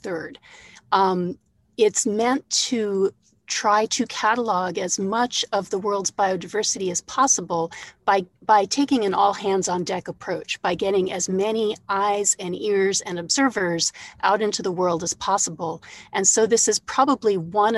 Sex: female